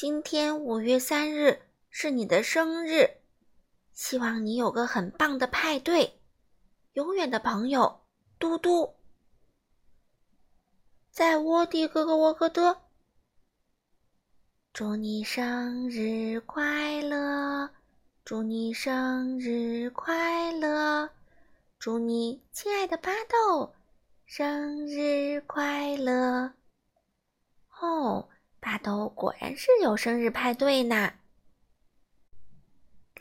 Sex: female